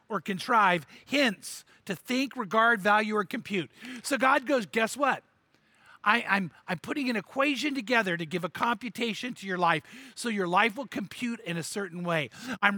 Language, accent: English, American